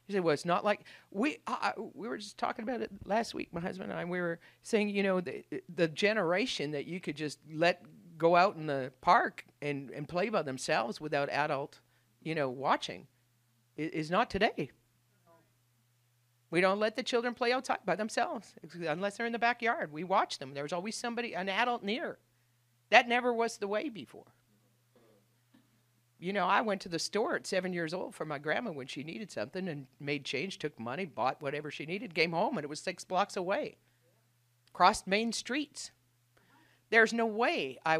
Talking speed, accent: 190 wpm, American